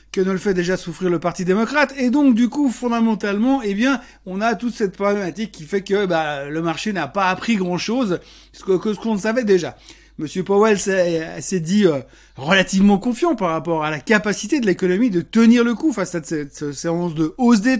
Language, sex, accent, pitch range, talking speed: French, male, French, 170-235 Hz, 205 wpm